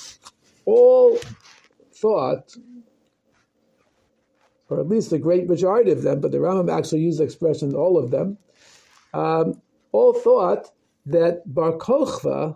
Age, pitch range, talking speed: 50-69, 160-225 Hz, 125 wpm